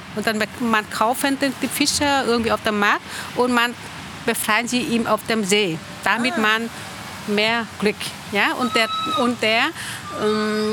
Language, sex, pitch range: German, female, 200-245 Hz